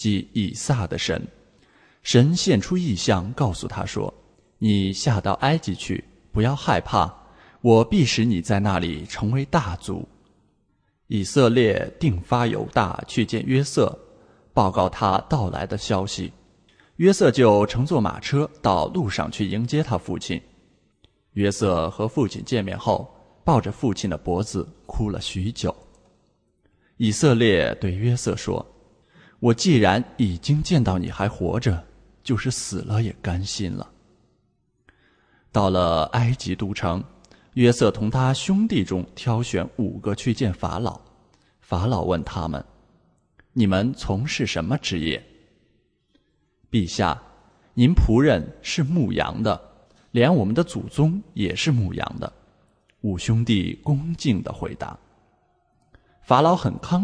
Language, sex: English, male